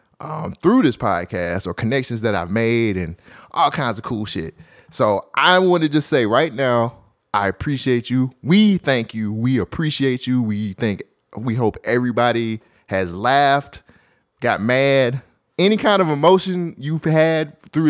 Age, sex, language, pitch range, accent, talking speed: 20-39, male, English, 105-145 Hz, American, 160 wpm